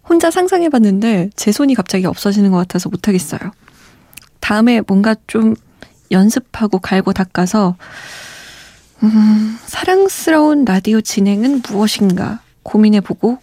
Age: 20-39